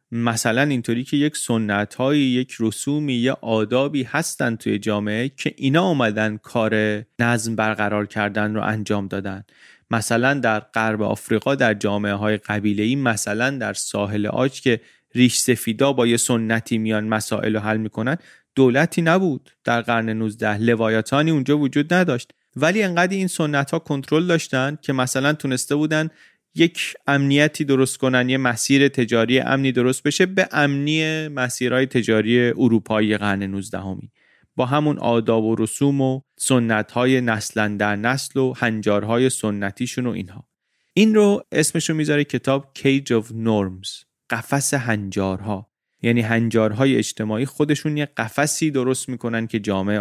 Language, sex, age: Persian, male, 30-49